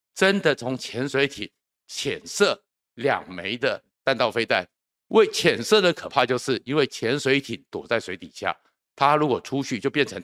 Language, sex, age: Chinese, male, 50-69